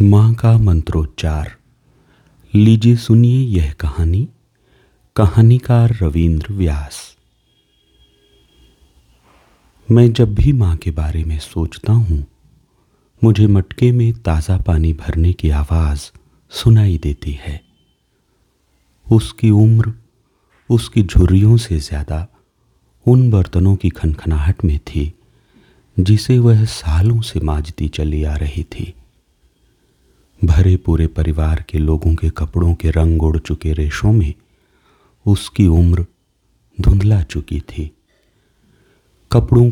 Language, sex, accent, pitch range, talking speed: Hindi, male, native, 80-105 Hz, 105 wpm